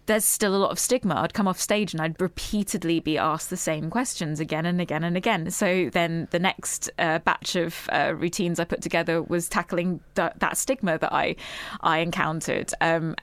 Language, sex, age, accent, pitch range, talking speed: English, female, 20-39, British, 165-200 Hz, 205 wpm